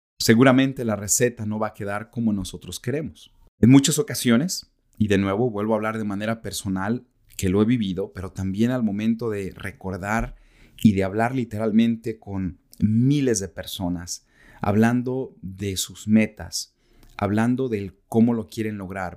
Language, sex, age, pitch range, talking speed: Spanish, male, 30-49, 100-120 Hz, 155 wpm